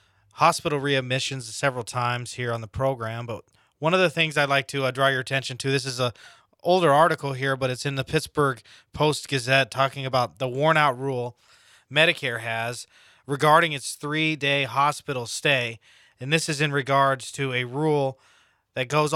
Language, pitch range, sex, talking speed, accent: English, 125-145 Hz, male, 180 wpm, American